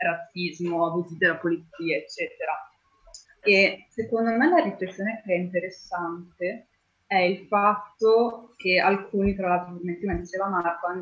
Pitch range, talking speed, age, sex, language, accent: 175-195 Hz, 135 wpm, 20-39, female, Italian, native